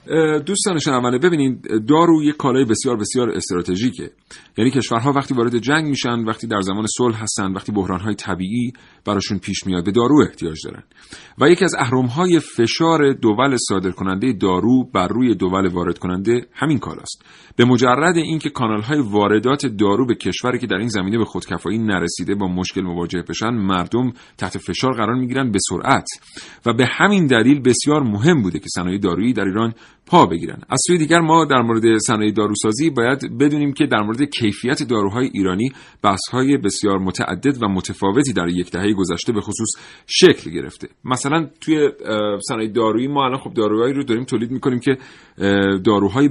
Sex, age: male, 40-59